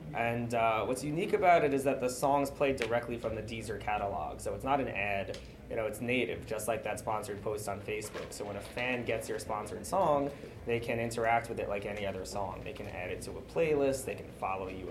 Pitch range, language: 110-125 Hz, English